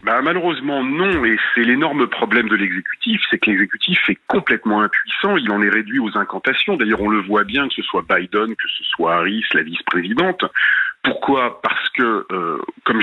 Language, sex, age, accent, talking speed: French, male, 40-59, French, 190 wpm